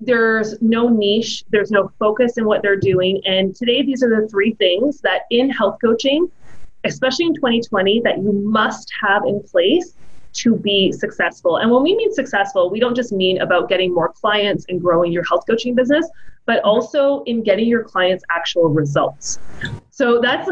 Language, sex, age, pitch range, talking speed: English, female, 30-49, 185-250 Hz, 180 wpm